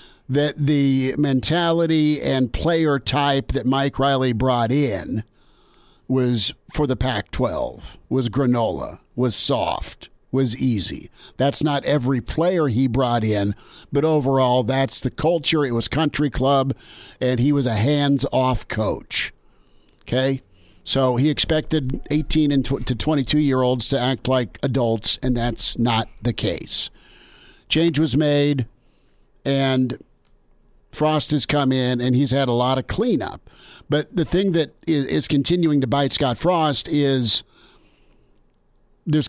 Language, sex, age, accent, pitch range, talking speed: English, male, 50-69, American, 125-150 Hz, 130 wpm